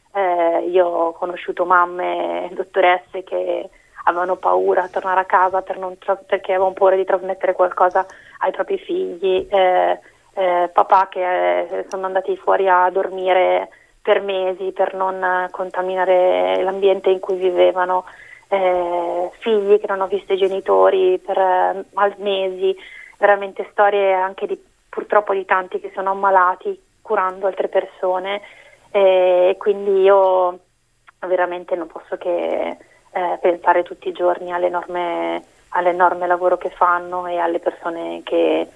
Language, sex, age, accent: Italian, female, 30-49, native